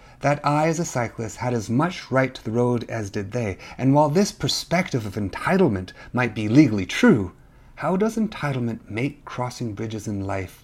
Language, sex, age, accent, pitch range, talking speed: English, male, 40-59, American, 115-155 Hz, 185 wpm